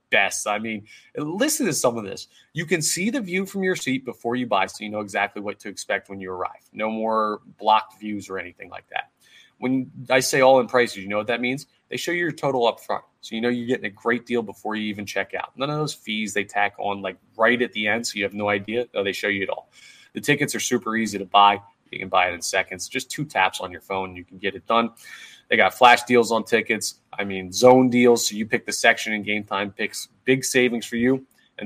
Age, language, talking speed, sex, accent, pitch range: 30-49, English, 260 wpm, male, American, 105-130 Hz